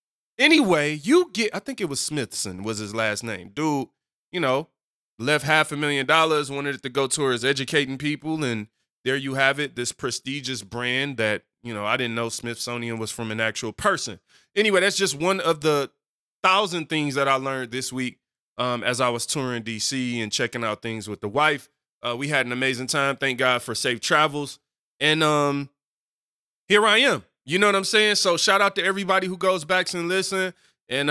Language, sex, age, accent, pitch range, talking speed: English, male, 20-39, American, 130-160 Hz, 205 wpm